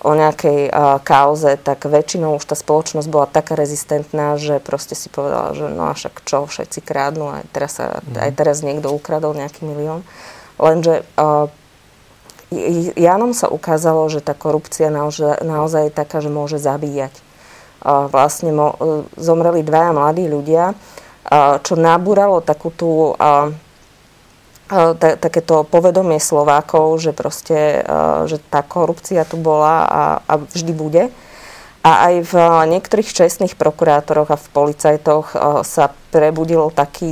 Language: Slovak